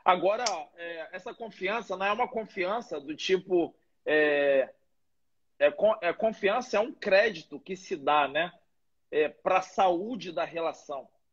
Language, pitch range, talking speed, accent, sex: Portuguese, 175-220 Hz, 140 wpm, Brazilian, male